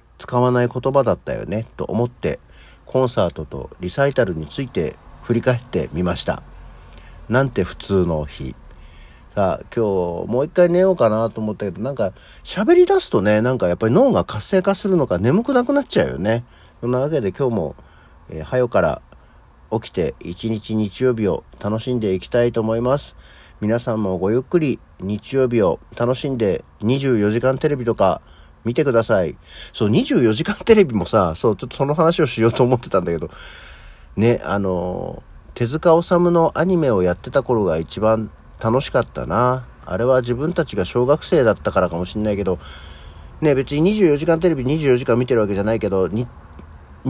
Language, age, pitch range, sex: Japanese, 50-69, 90-135 Hz, male